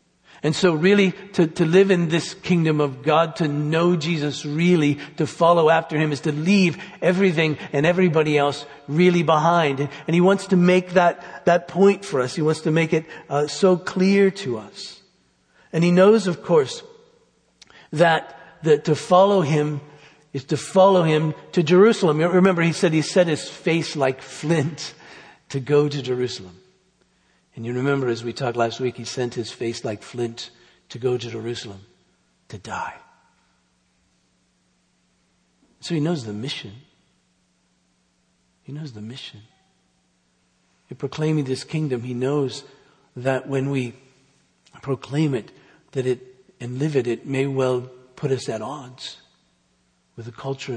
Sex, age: male, 50-69